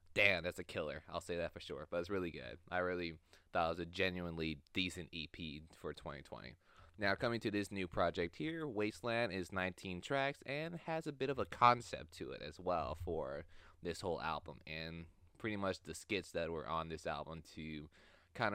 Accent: American